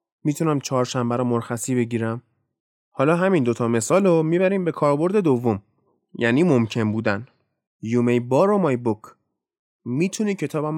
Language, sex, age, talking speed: Persian, male, 30-49, 135 wpm